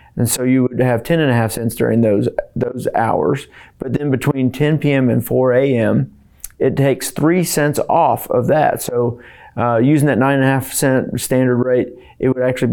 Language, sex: English, male